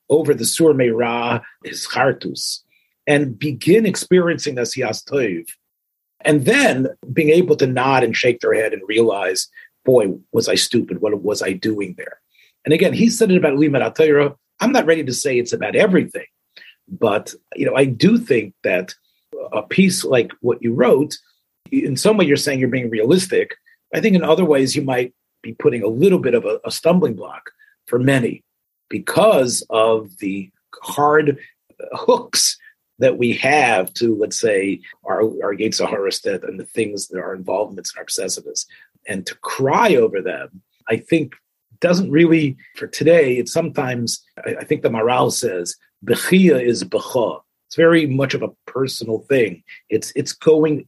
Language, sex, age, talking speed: English, male, 40-59, 170 wpm